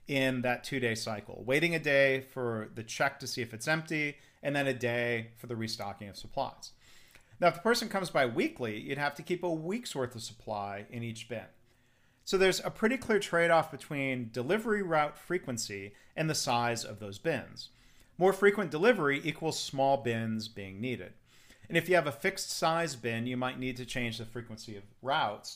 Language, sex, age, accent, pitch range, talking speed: English, male, 40-59, American, 115-155 Hz, 195 wpm